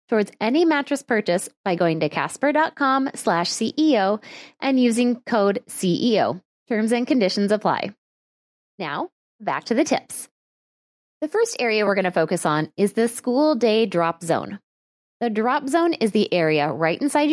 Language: English